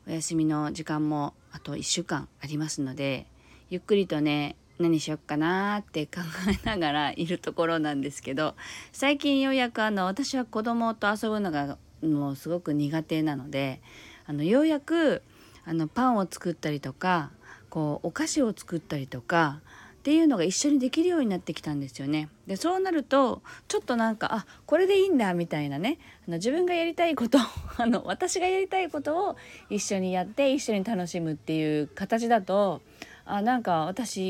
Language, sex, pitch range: Japanese, female, 150-210 Hz